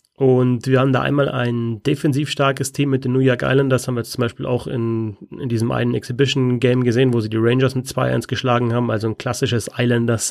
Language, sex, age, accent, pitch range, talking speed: German, male, 30-49, German, 120-130 Hz, 225 wpm